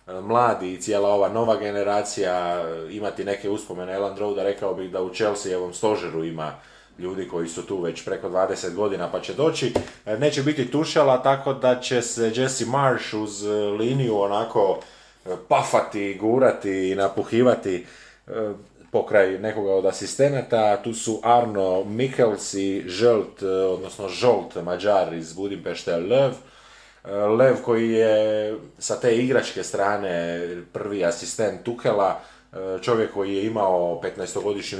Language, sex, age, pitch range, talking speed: Croatian, male, 30-49, 90-120 Hz, 135 wpm